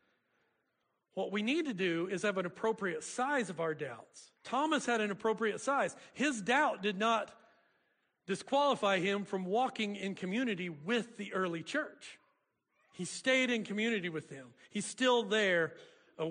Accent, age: American, 50-69